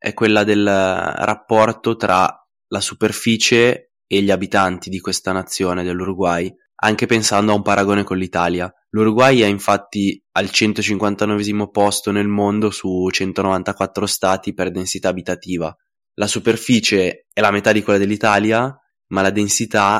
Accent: native